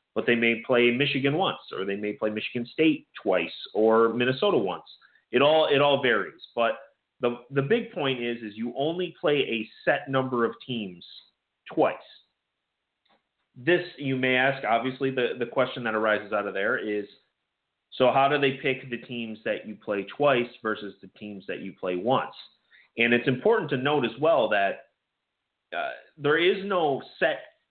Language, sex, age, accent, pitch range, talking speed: English, male, 30-49, American, 110-135 Hz, 180 wpm